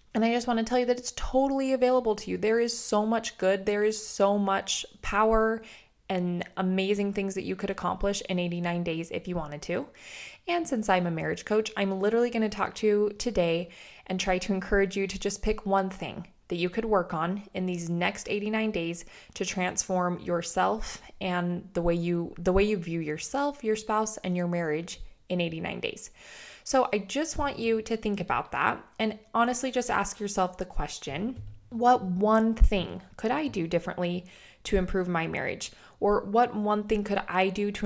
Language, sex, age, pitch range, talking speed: English, female, 20-39, 180-220 Hz, 200 wpm